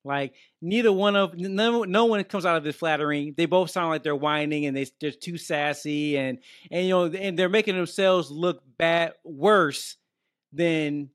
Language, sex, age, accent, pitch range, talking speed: English, male, 20-39, American, 150-195 Hz, 190 wpm